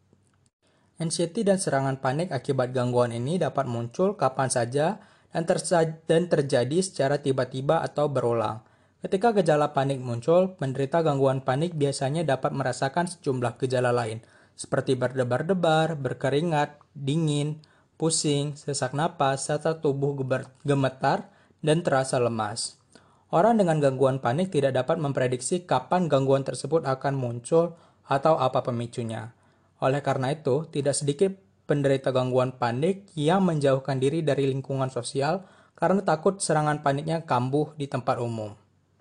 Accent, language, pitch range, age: native, Indonesian, 125-155 Hz, 20-39